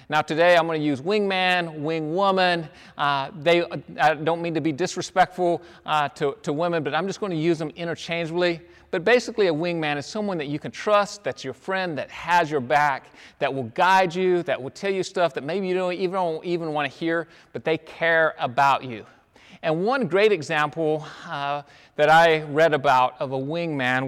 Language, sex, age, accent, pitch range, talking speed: English, male, 40-59, American, 150-185 Hz, 195 wpm